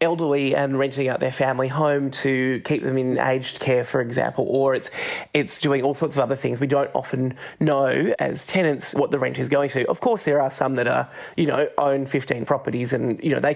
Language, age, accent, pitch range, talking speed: English, 20-39, Australian, 135-155 Hz, 230 wpm